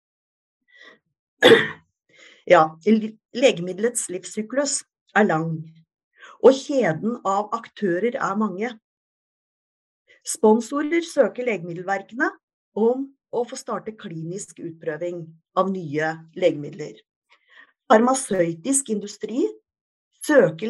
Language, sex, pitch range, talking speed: English, female, 175-270 Hz, 80 wpm